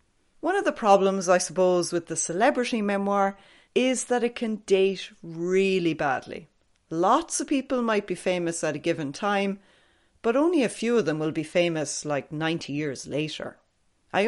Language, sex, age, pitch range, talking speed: English, female, 30-49, 160-205 Hz, 170 wpm